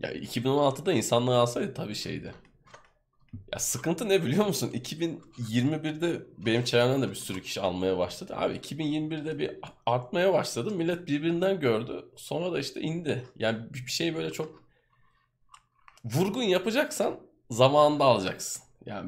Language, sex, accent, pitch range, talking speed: Turkish, male, native, 105-130 Hz, 130 wpm